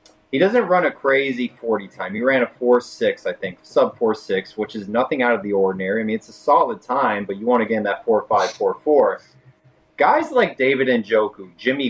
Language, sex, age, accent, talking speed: English, male, 20-39, American, 225 wpm